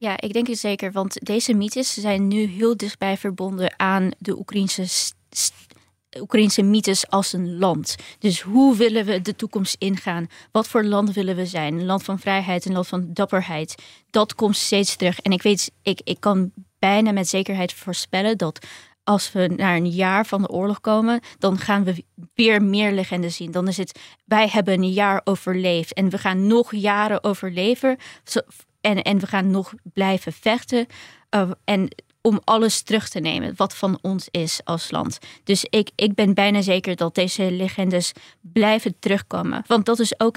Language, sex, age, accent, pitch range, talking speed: Dutch, female, 20-39, Dutch, 180-210 Hz, 180 wpm